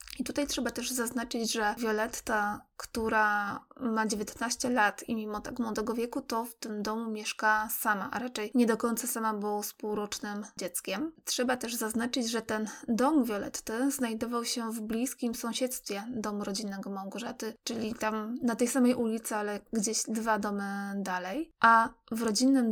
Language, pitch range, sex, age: Polish, 215-245 Hz, female, 20-39